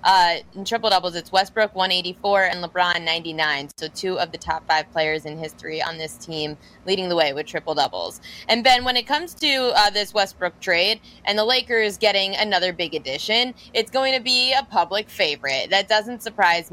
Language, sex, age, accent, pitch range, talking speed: English, female, 20-39, American, 170-210 Hz, 195 wpm